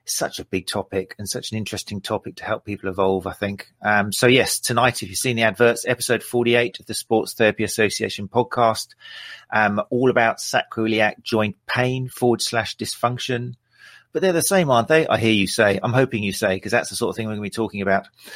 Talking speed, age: 220 wpm, 40-59